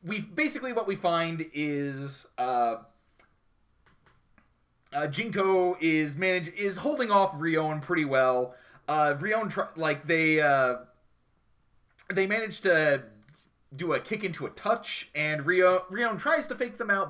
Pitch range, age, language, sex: 130-175 Hz, 30-49, English, male